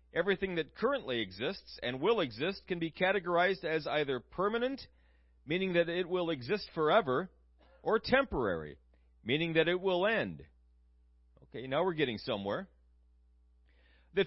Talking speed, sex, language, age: 135 wpm, male, English, 40-59